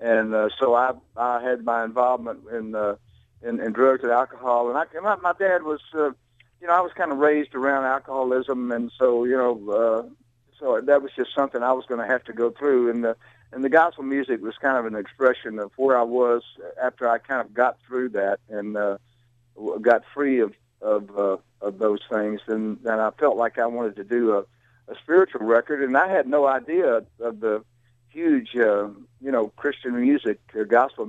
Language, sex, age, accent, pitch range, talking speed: English, male, 60-79, American, 115-135 Hz, 210 wpm